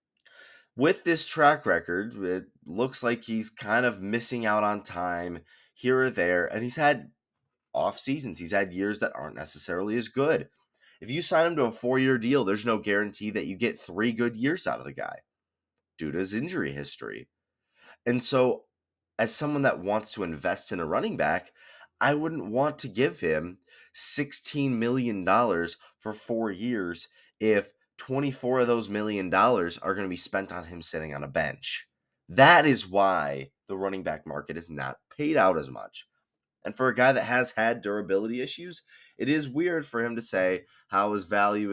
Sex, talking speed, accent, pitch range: male, 185 wpm, American, 100-135 Hz